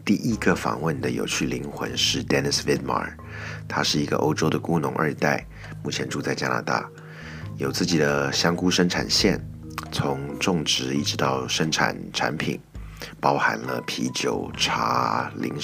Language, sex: Chinese, male